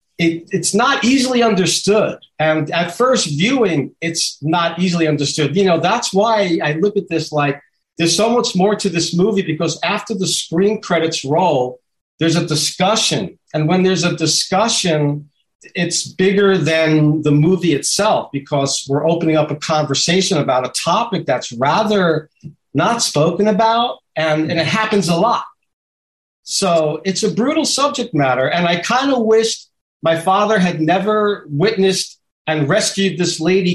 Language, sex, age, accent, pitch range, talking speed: English, male, 50-69, American, 155-200 Hz, 160 wpm